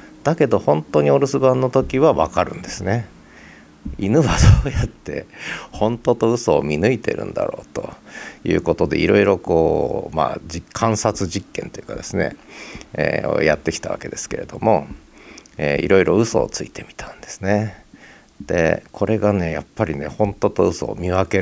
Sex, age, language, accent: male, 40-59, Japanese, native